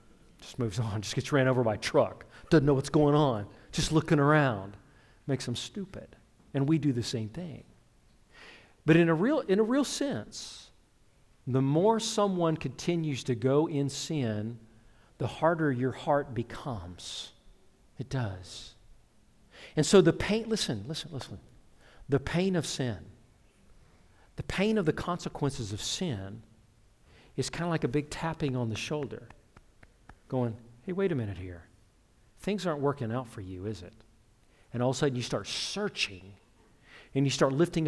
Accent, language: American, English